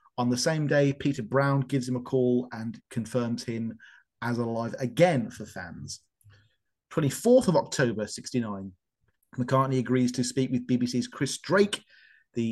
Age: 30-49